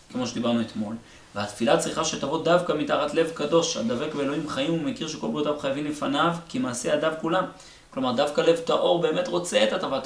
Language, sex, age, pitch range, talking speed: Hebrew, male, 30-49, 145-185 Hz, 180 wpm